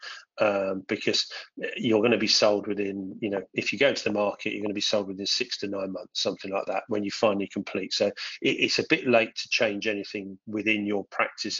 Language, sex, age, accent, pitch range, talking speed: English, male, 40-59, British, 100-115 Hz, 220 wpm